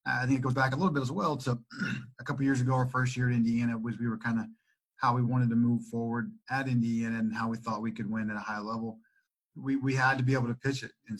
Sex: male